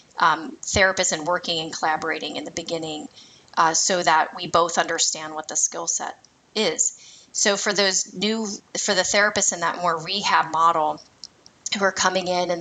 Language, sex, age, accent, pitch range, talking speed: English, female, 30-49, American, 165-190 Hz, 175 wpm